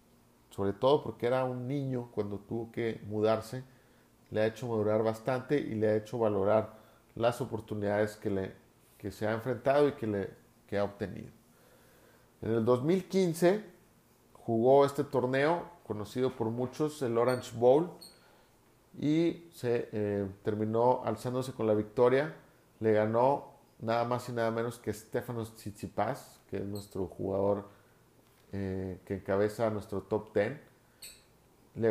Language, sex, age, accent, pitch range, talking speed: Spanish, male, 40-59, Mexican, 110-130 Hz, 140 wpm